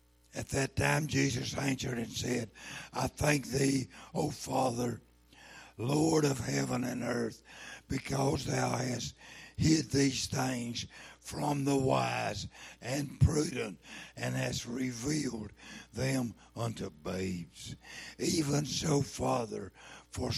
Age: 60-79